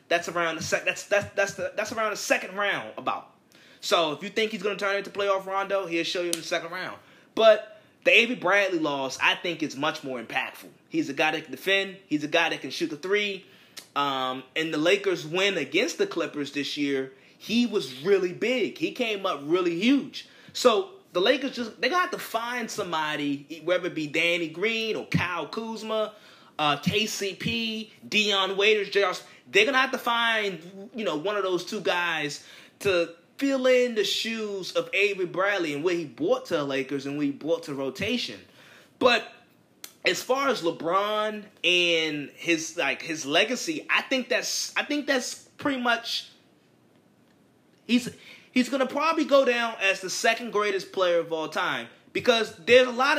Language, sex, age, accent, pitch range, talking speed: English, male, 20-39, American, 170-240 Hz, 185 wpm